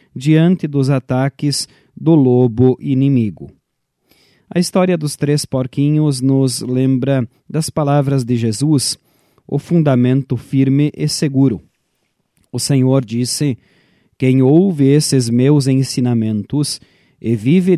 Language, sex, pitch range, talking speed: Portuguese, male, 125-150 Hz, 110 wpm